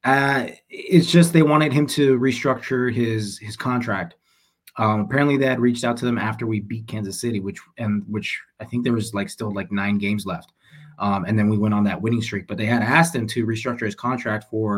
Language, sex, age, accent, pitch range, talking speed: English, male, 20-39, American, 100-125 Hz, 225 wpm